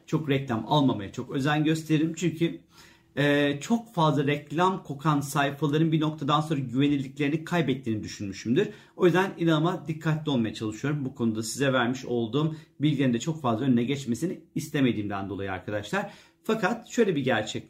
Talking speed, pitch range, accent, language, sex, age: 140 wpm, 125-175 Hz, native, Turkish, male, 40-59